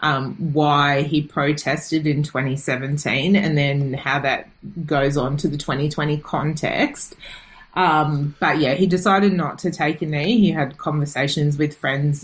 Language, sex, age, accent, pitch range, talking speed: English, female, 30-49, Australian, 135-165 Hz, 150 wpm